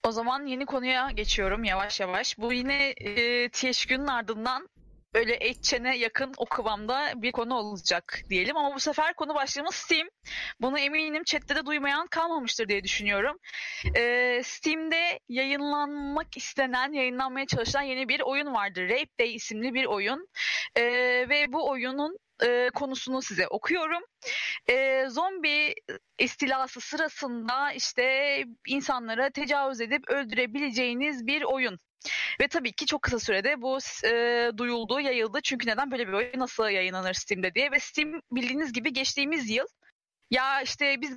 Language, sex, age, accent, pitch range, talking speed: Turkish, female, 30-49, native, 245-300 Hz, 140 wpm